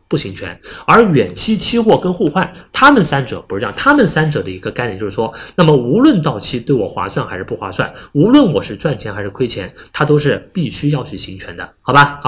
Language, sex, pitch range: Chinese, male, 110-170 Hz